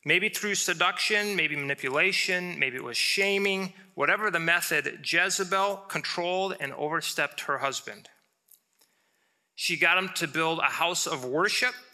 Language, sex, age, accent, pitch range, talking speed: English, male, 30-49, American, 140-185 Hz, 135 wpm